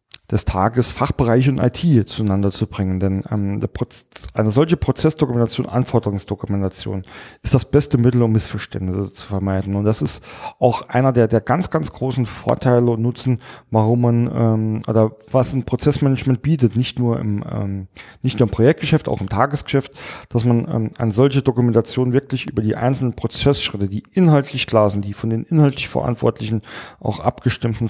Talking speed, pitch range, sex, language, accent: 160 wpm, 110-130 Hz, male, German, German